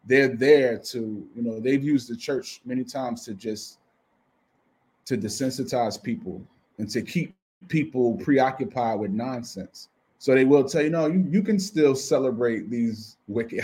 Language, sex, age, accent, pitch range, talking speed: English, male, 20-39, American, 115-145 Hz, 160 wpm